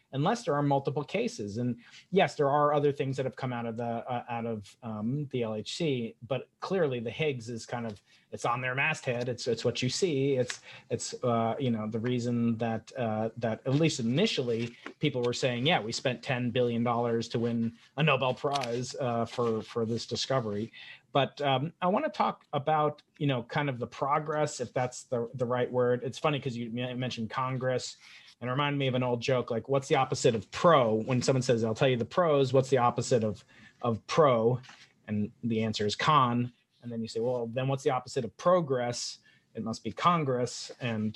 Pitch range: 115-135 Hz